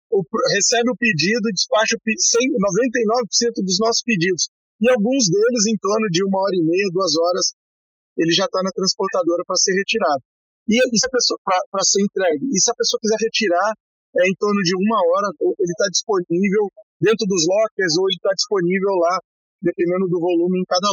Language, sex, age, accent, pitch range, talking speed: Portuguese, male, 40-59, Brazilian, 185-230 Hz, 185 wpm